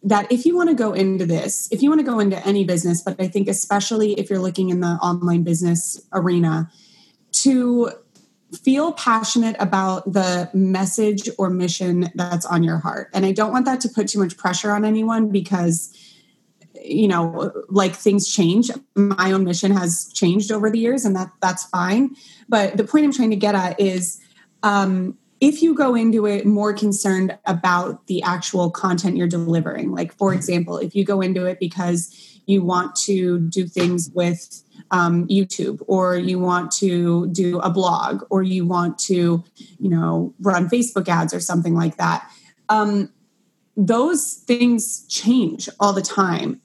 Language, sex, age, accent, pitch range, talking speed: English, female, 20-39, American, 180-210 Hz, 175 wpm